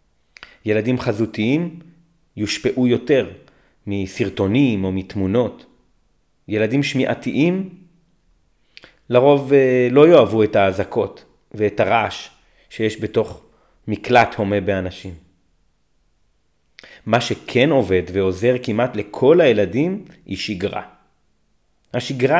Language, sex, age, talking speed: Hebrew, male, 30-49, 85 wpm